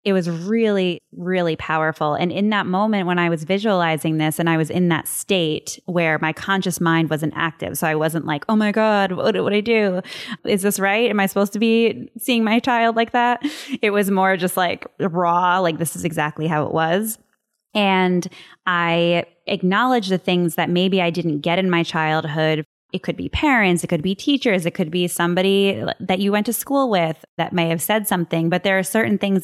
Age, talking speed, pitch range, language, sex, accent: 20-39, 215 wpm, 160-190 Hz, English, female, American